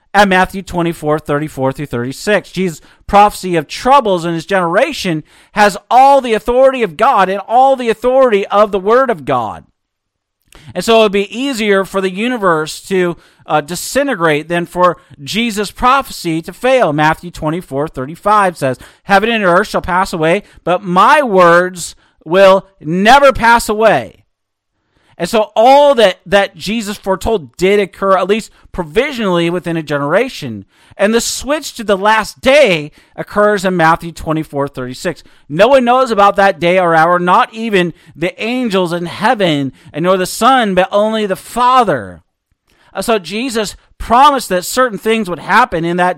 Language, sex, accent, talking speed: English, male, American, 160 wpm